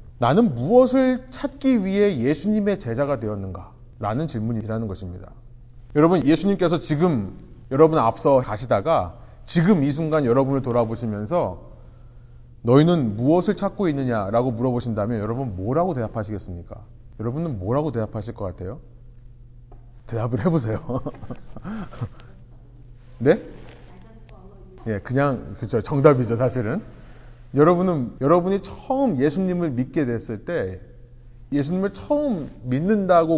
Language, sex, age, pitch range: Korean, male, 30-49, 120-160 Hz